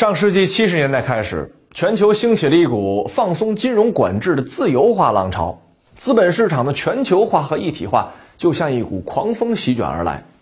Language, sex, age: Chinese, male, 20-39